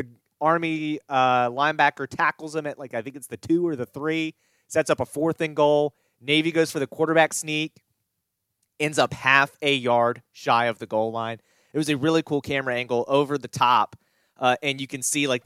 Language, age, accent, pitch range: English, 30-49, American, 110-140 Hz